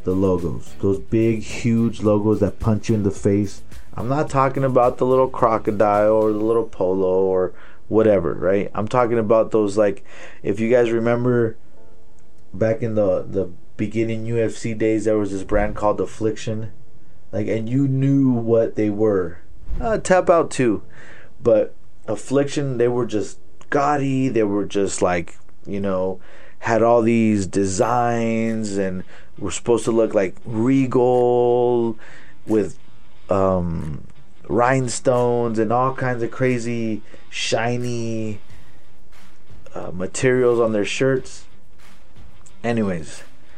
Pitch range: 100-120 Hz